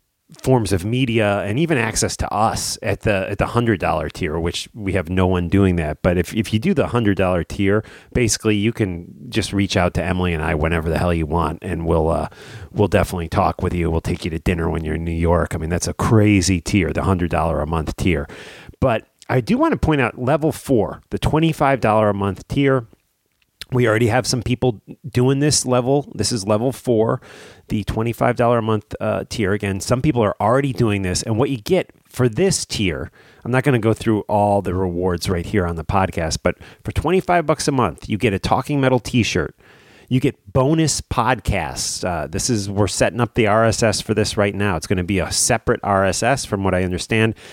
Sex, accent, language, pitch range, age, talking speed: male, American, English, 90-120 Hz, 30-49, 215 wpm